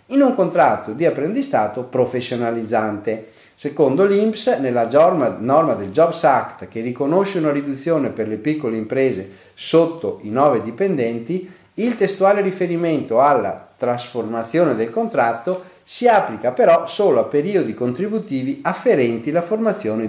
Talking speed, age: 125 wpm, 50-69